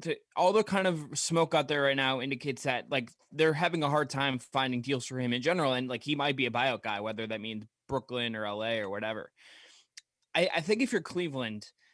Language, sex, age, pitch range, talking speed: English, male, 20-39, 120-140 Hz, 230 wpm